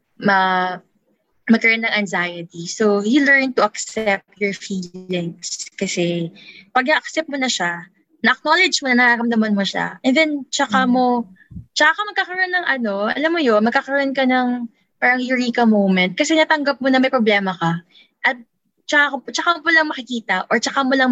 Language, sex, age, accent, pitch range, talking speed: English, female, 20-39, Filipino, 195-275 Hz, 160 wpm